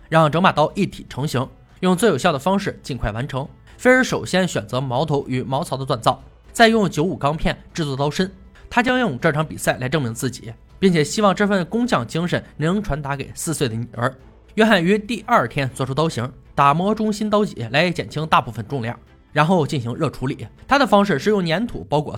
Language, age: Chinese, 20-39